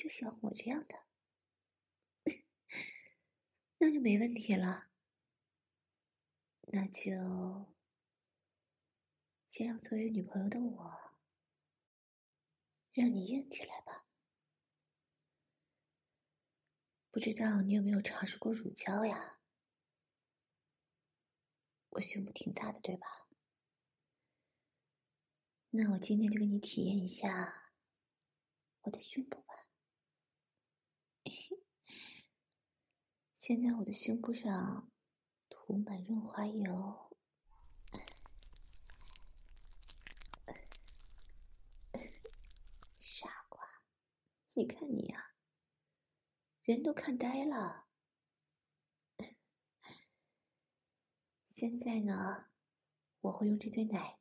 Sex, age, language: female, 30-49, English